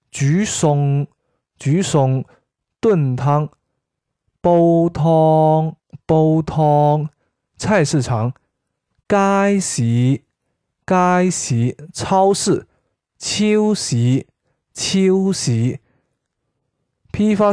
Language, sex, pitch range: Chinese, male, 125-170 Hz